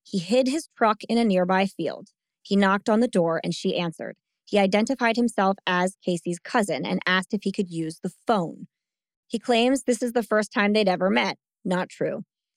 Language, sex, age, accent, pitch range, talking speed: English, female, 20-39, American, 185-230 Hz, 200 wpm